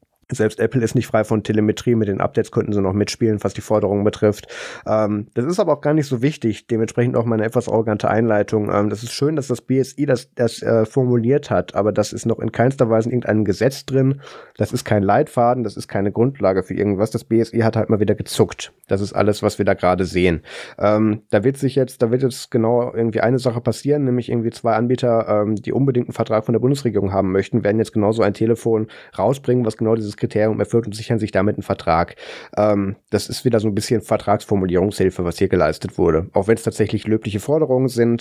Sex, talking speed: male, 230 wpm